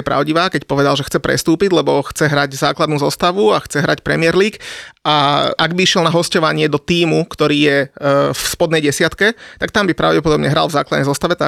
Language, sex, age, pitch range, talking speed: Slovak, male, 30-49, 150-175 Hz, 200 wpm